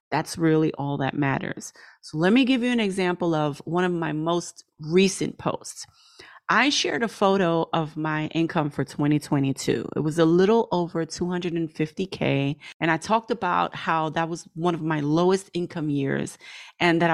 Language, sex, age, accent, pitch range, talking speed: English, female, 30-49, American, 155-205 Hz, 170 wpm